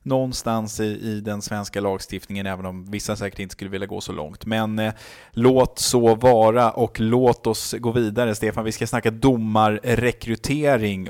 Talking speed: 160 wpm